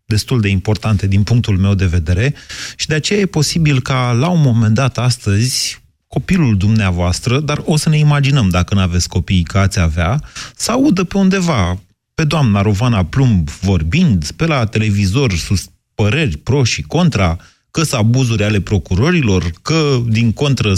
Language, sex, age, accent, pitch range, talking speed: Romanian, male, 30-49, native, 100-140 Hz, 170 wpm